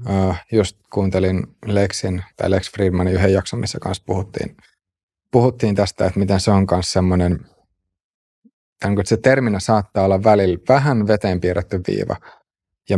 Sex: male